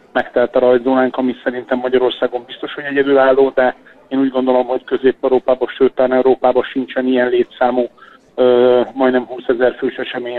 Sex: male